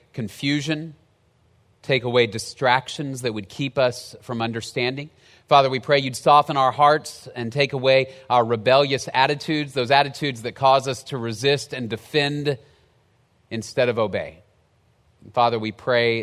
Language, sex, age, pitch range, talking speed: English, male, 30-49, 110-155 Hz, 140 wpm